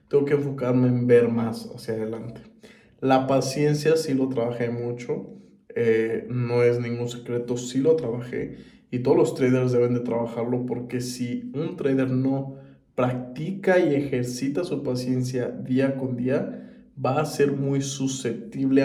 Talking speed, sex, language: 150 wpm, male, Spanish